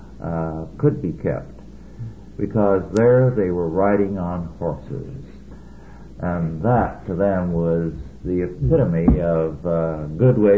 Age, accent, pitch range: 60-79, American, 85-115 Hz